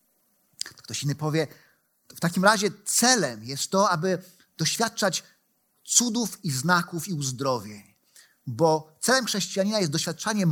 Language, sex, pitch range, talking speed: Polish, male, 155-210 Hz, 120 wpm